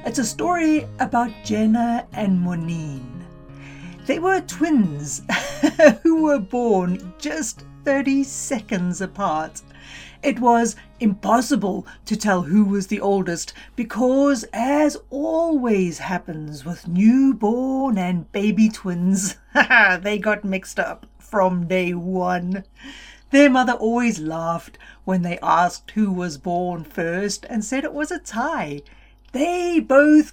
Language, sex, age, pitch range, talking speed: English, female, 60-79, 185-280 Hz, 120 wpm